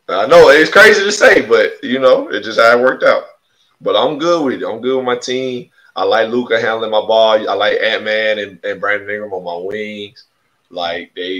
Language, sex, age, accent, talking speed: English, male, 20-39, American, 235 wpm